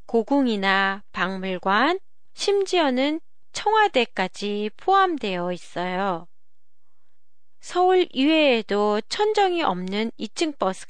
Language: Japanese